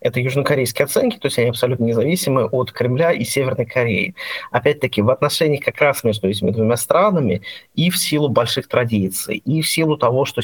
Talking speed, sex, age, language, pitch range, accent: 185 wpm, male, 30-49, Russian, 115-150 Hz, native